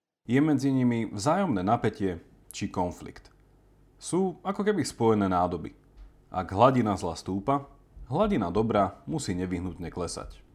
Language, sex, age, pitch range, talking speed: Slovak, male, 30-49, 95-140 Hz, 120 wpm